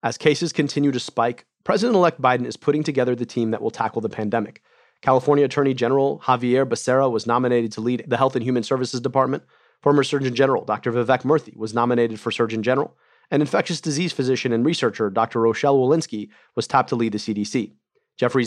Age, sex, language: 30-49, male, English